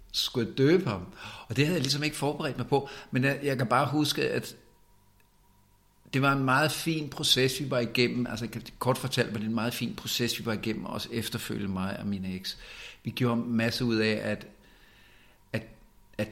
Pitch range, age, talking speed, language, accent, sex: 105-125 Hz, 50-69, 215 wpm, Danish, native, male